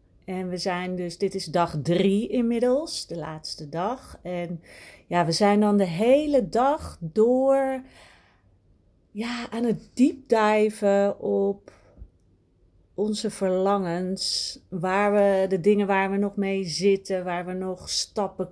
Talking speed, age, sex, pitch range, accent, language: 135 wpm, 40-59, female, 170-230 Hz, Dutch, Dutch